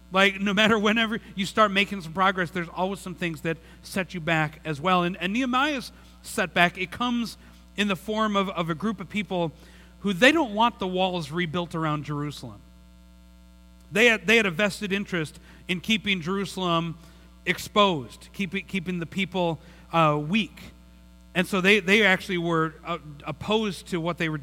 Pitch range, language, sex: 160-200 Hz, English, male